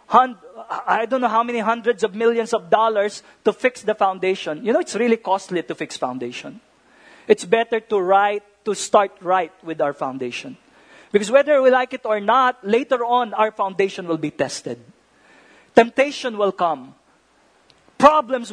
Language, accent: English, Filipino